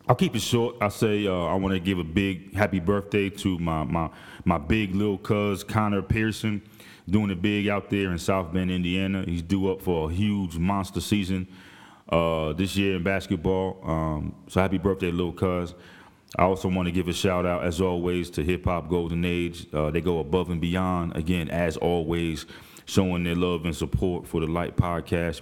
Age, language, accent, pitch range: 30-49, English, American, 80-95 Hz